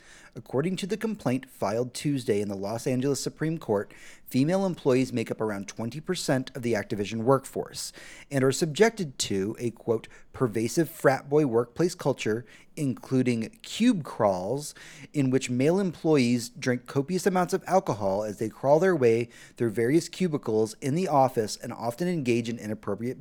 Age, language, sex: 30-49, English, male